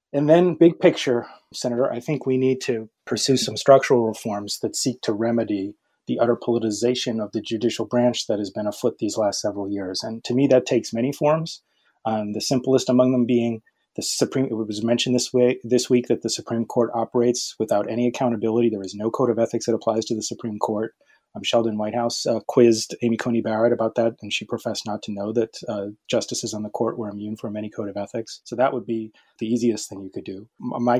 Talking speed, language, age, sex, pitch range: 225 wpm, English, 30-49, male, 110-125 Hz